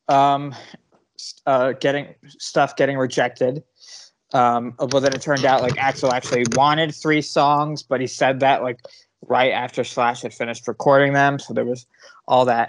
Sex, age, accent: male, 20-39, American